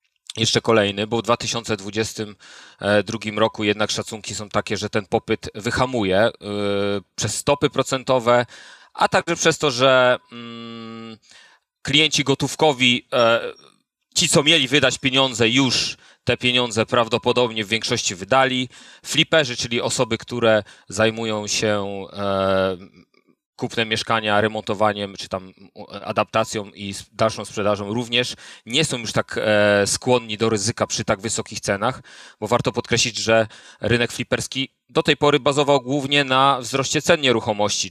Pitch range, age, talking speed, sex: 105-125 Hz, 30-49, 125 wpm, male